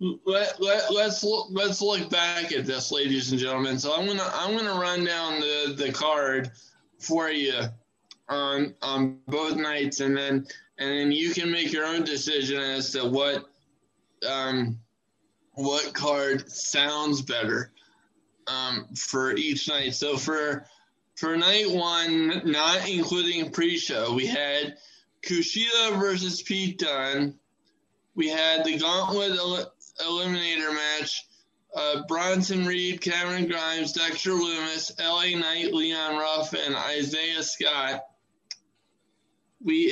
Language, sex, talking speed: English, male, 130 wpm